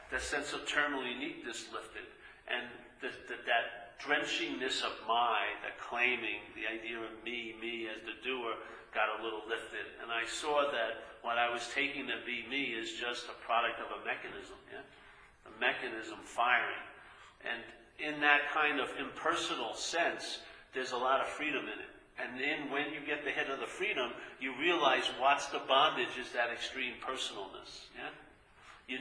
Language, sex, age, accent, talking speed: English, male, 50-69, American, 175 wpm